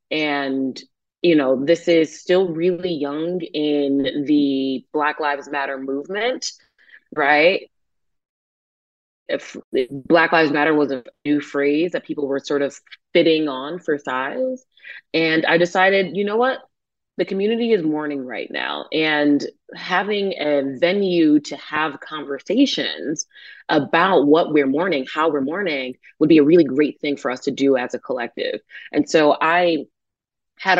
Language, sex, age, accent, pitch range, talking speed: English, female, 20-39, American, 140-180 Hz, 150 wpm